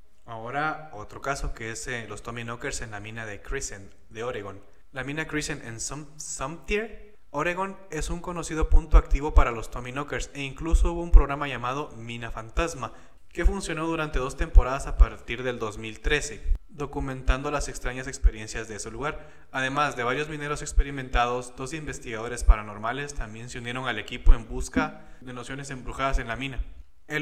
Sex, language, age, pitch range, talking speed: male, Spanish, 20-39, 115-145 Hz, 165 wpm